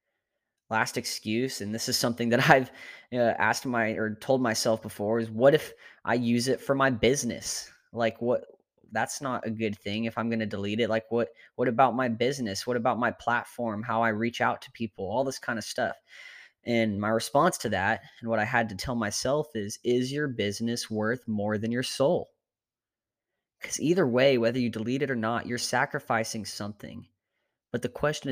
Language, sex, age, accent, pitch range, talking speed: English, male, 20-39, American, 110-125 Hz, 200 wpm